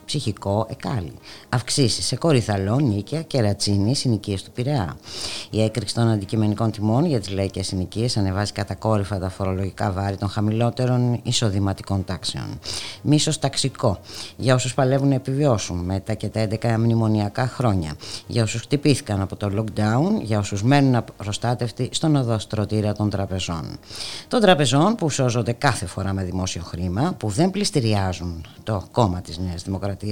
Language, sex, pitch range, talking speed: Greek, female, 100-130 Hz, 145 wpm